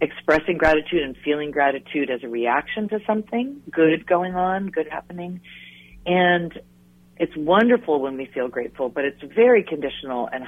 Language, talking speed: English, 155 wpm